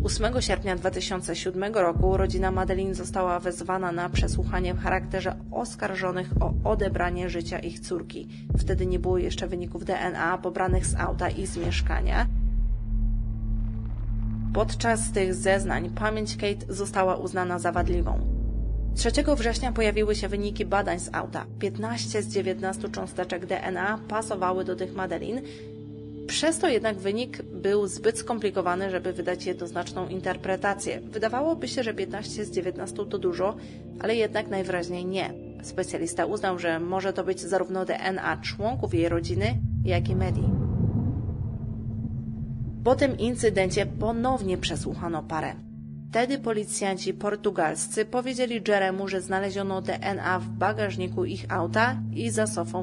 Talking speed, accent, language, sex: 130 wpm, native, Polish, female